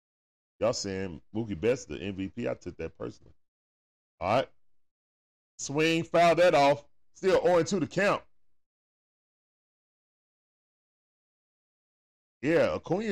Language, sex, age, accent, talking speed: English, male, 10-29, American, 100 wpm